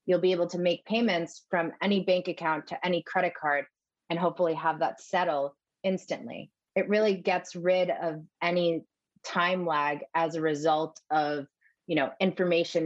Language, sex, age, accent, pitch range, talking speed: English, female, 30-49, American, 155-205 Hz, 155 wpm